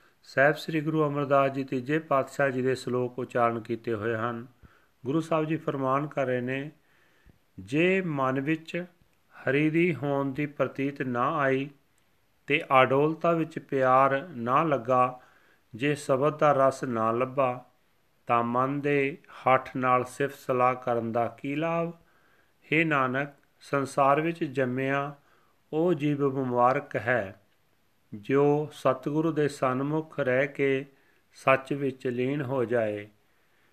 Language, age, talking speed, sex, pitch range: Punjabi, 40-59, 135 wpm, male, 130-150 Hz